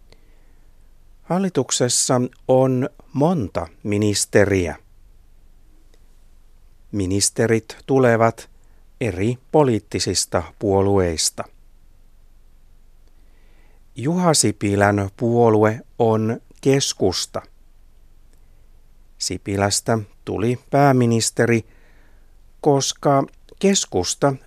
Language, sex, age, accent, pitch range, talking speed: Finnish, male, 60-79, native, 90-125 Hz, 45 wpm